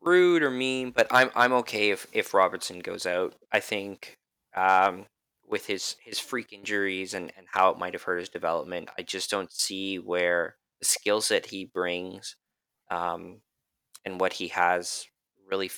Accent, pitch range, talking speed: American, 90-100 Hz, 170 wpm